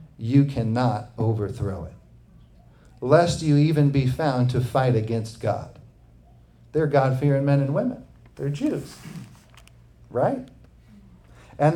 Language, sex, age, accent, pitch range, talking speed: English, male, 50-69, American, 120-150 Hz, 110 wpm